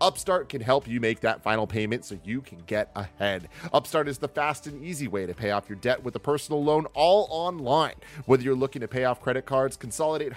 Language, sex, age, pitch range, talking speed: English, male, 30-49, 110-140 Hz, 230 wpm